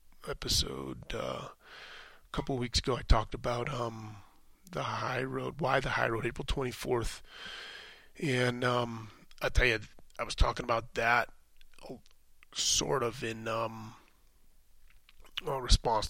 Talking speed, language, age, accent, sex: 125 wpm, English, 30-49, American, male